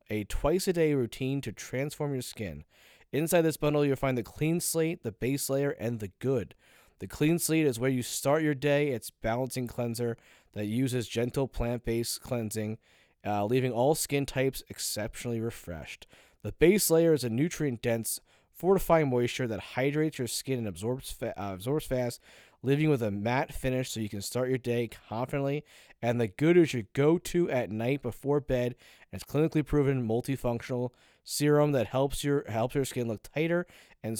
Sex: male